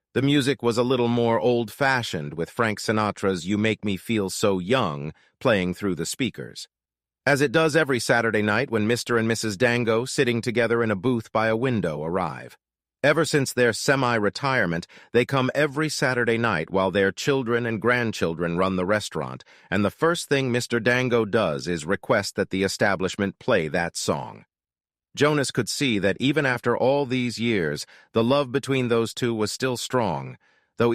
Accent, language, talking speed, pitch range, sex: American, English, 175 wpm, 95-130 Hz, male